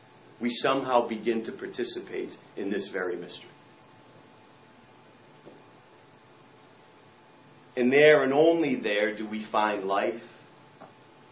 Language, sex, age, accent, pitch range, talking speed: English, male, 40-59, American, 105-160 Hz, 95 wpm